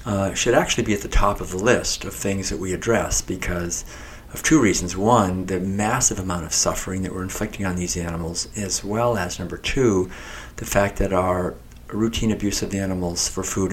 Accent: American